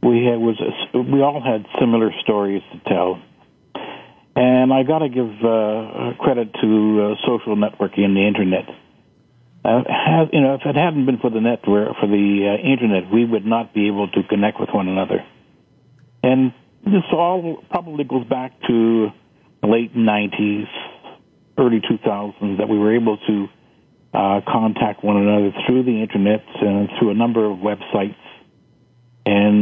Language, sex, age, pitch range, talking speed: English, male, 60-79, 105-125 Hz, 165 wpm